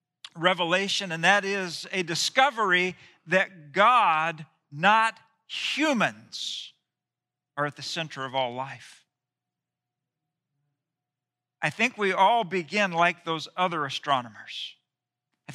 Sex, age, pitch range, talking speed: male, 50-69, 150-210 Hz, 105 wpm